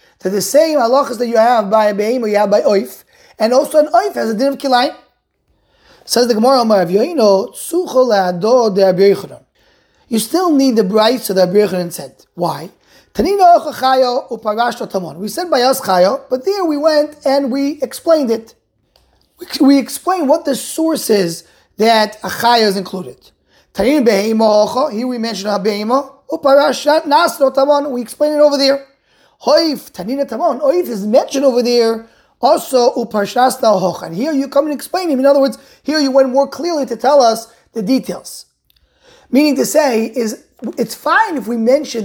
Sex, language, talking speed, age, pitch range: male, English, 175 wpm, 20-39, 215-280 Hz